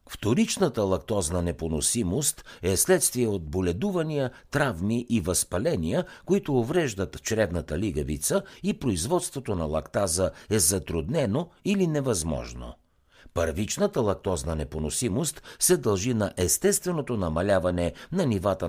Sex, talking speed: male, 105 wpm